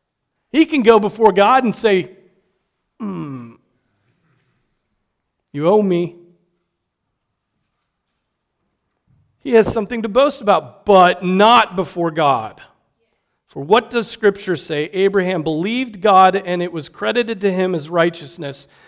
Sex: male